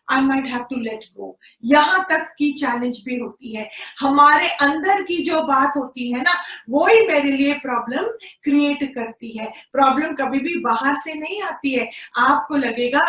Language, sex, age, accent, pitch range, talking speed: Hindi, female, 30-49, native, 245-300 Hz, 175 wpm